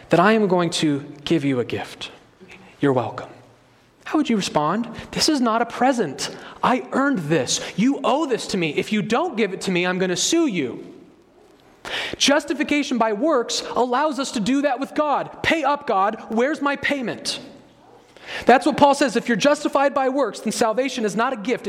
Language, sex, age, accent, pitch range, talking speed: English, male, 30-49, American, 185-255 Hz, 195 wpm